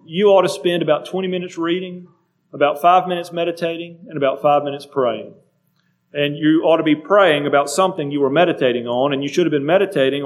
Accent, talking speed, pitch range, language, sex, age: American, 205 wpm, 145-180 Hz, English, male, 40-59